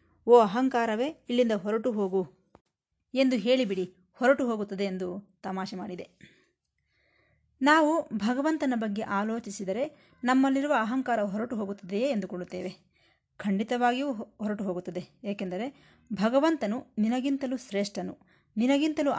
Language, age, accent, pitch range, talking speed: Kannada, 20-39, native, 190-255 Hz, 90 wpm